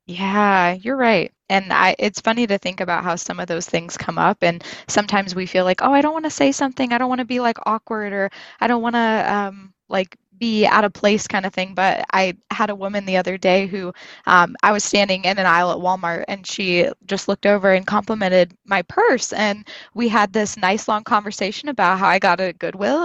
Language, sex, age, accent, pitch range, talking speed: English, female, 10-29, American, 180-215 Hz, 235 wpm